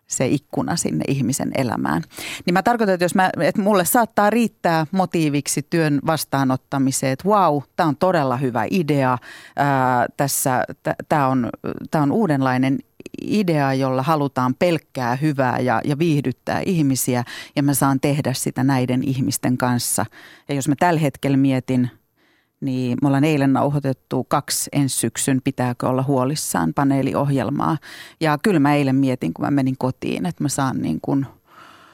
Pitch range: 130-155 Hz